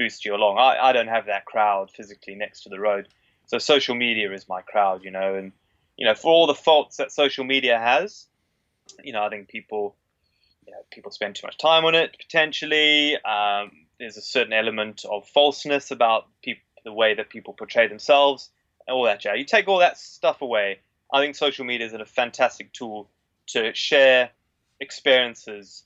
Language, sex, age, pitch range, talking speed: English, male, 20-39, 105-140 Hz, 195 wpm